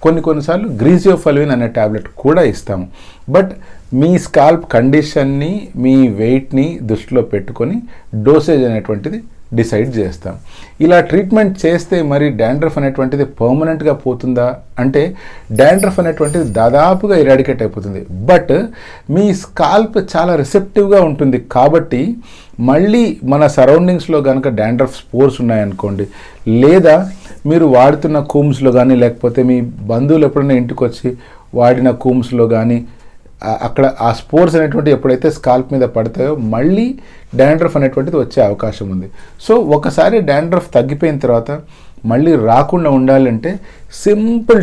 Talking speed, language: 75 wpm, English